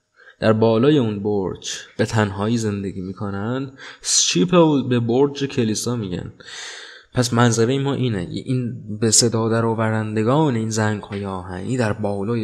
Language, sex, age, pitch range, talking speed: Persian, male, 20-39, 110-135 Hz, 135 wpm